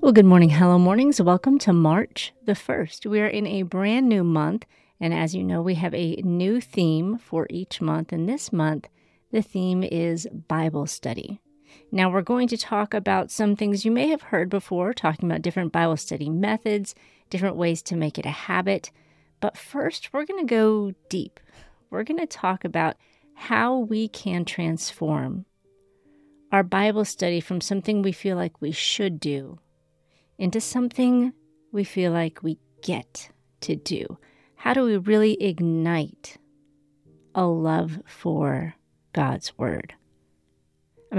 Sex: female